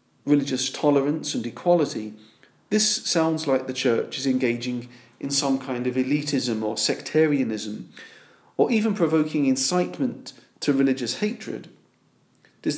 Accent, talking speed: British, 120 wpm